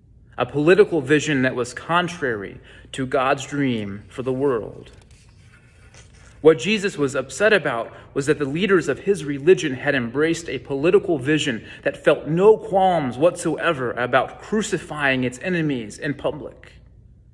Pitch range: 125-175 Hz